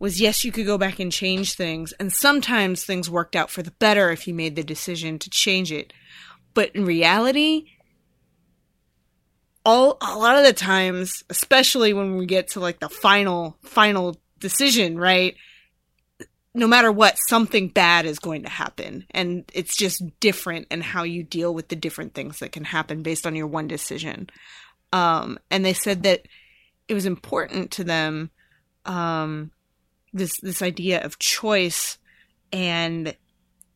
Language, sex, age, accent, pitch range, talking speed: English, female, 20-39, American, 165-200 Hz, 160 wpm